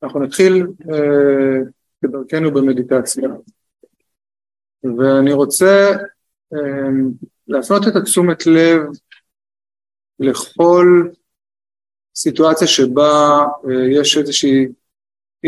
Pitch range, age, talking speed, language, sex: 135-170 Hz, 20-39, 70 wpm, Hebrew, male